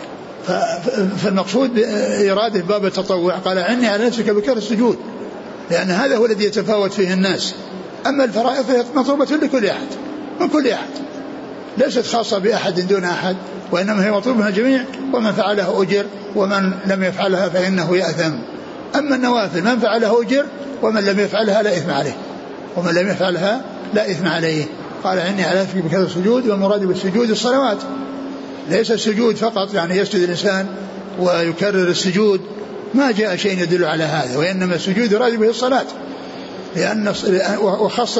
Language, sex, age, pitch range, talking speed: Arabic, male, 60-79, 185-225 Hz, 140 wpm